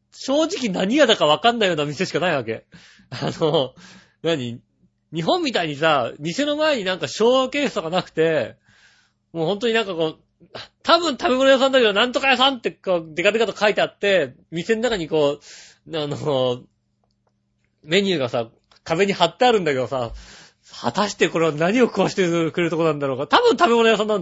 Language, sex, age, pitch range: Japanese, male, 40-59, 130-215 Hz